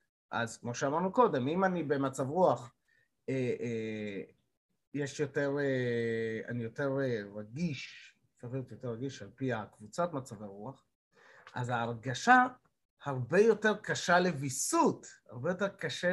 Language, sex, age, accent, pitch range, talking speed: Hebrew, male, 30-49, native, 130-195 Hz, 110 wpm